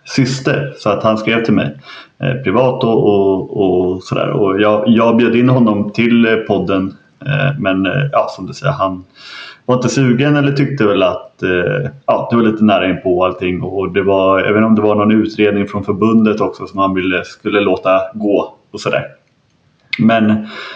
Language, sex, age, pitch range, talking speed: English, male, 30-49, 95-130 Hz, 190 wpm